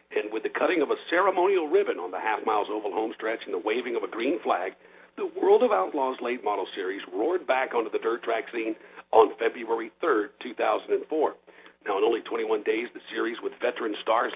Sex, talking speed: male, 205 wpm